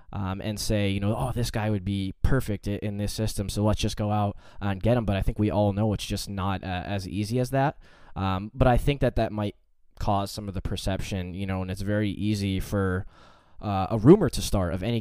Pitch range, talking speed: 95-110 Hz, 250 wpm